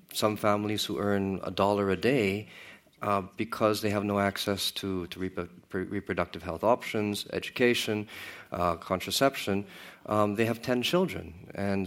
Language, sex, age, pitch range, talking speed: English, male, 40-59, 90-105 Hz, 145 wpm